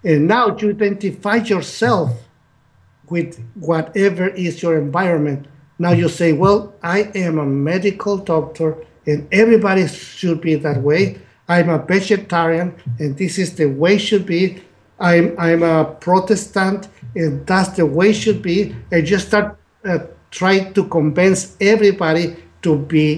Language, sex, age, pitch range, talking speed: English, male, 50-69, 150-195 Hz, 150 wpm